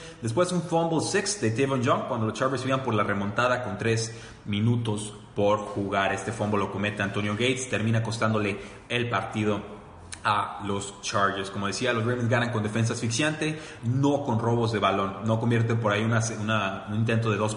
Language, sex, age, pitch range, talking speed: Spanish, male, 30-49, 105-125 Hz, 190 wpm